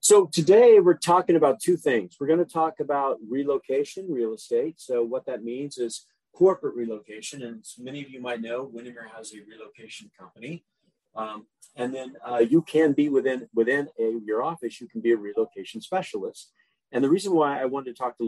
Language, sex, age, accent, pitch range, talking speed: English, male, 40-59, American, 115-150 Hz, 195 wpm